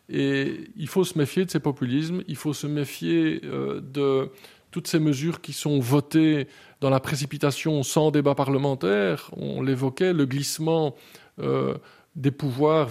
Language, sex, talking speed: French, male, 155 wpm